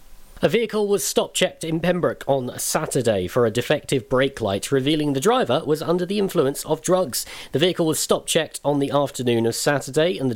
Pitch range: 120-165 Hz